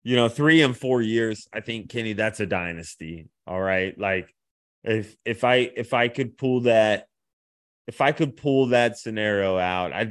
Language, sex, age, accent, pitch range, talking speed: English, male, 30-49, American, 95-120 Hz, 185 wpm